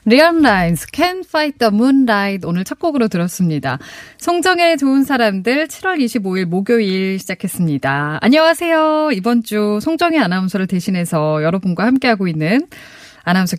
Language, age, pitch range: Korean, 20-39, 165-260 Hz